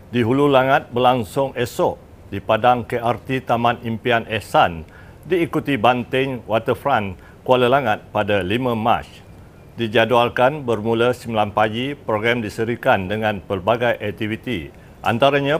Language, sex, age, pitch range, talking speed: Malay, male, 50-69, 110-130 Hz, 110 wpm